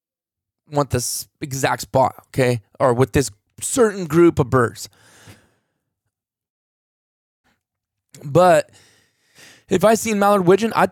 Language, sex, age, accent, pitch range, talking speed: English, male, 20-39, American, 125-170 Hz, 105 wpm